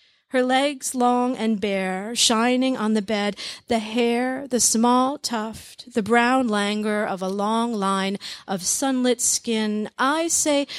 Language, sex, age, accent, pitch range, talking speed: English, female, 40-59, American, 205-260 Hz, 145 wpm